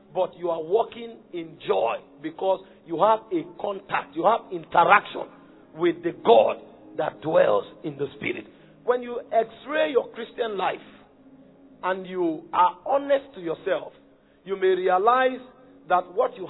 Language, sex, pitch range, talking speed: English, male, 190-265 Hz, 150 wpm